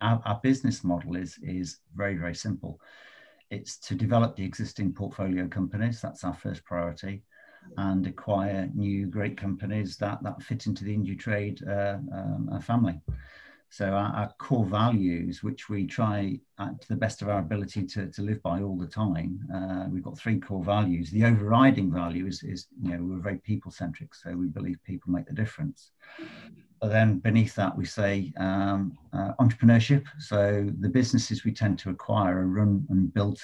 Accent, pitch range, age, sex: British, 95-110 Hz, 50-69, male